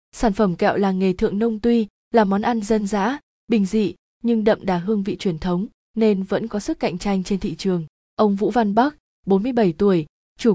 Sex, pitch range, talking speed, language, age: female, 185-225 Hz, 215 wpm, Vietnamese, 20-39